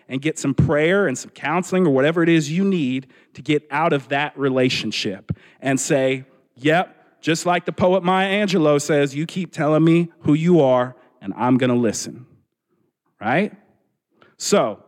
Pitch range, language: 130-170 Hz, English